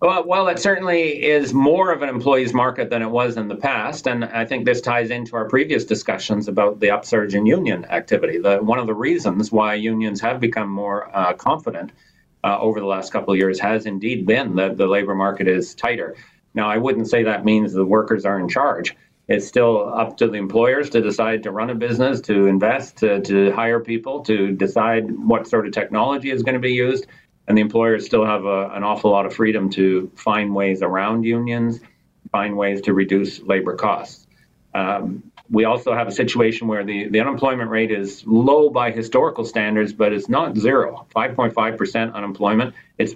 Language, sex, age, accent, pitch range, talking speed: English, male, 40-59, American, 100-120 Hz, 195 wpm